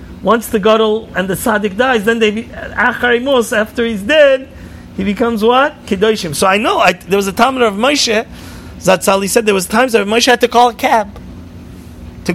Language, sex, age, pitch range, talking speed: English, male, 40-59, 190-230 Hz, 200 wpm